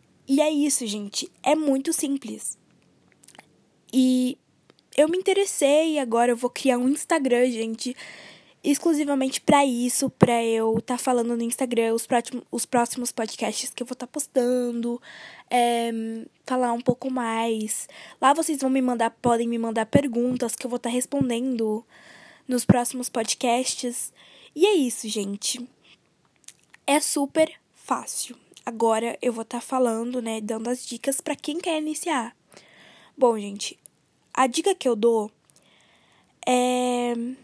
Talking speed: 145 wpm